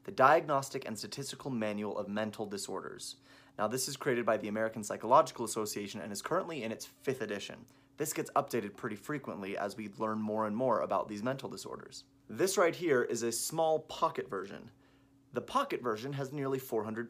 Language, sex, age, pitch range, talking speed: English, male, 30-49, 110-135 Hz, 185 wpm